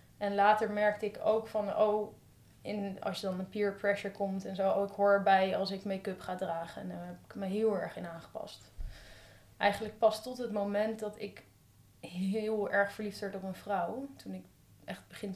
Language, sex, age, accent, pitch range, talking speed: Dutch, female, 20-39, Dutch, 185-210 Hz, 205 wpm